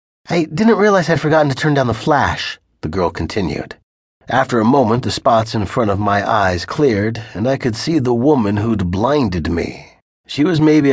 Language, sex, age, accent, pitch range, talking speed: English, male, 30-49, American, 105-135 Hz, 200 wpm